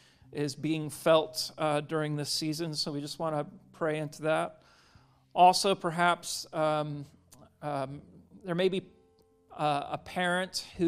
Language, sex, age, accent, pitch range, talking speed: English, male, 40-59, American, 145-175 Hz, 145 wpm